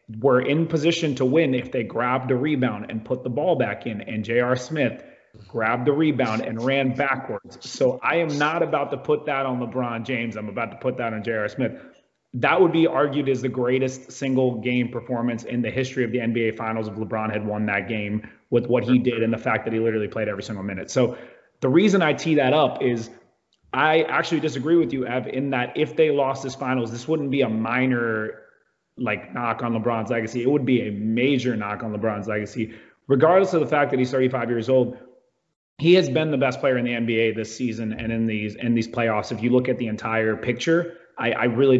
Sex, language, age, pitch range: male, English, 30-49, 115-135 Hz